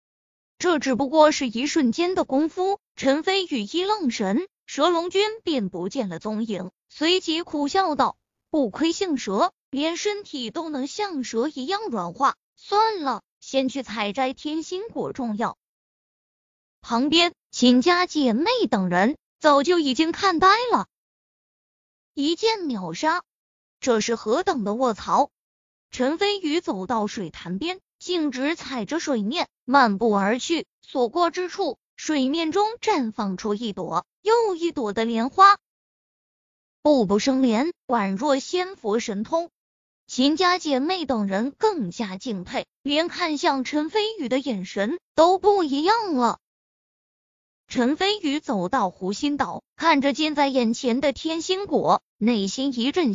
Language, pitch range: Chinese, 235-345 Hz